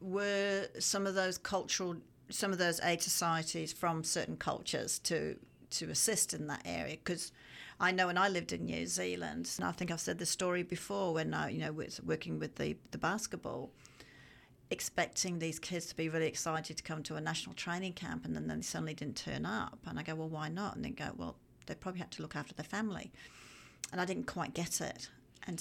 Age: 40-59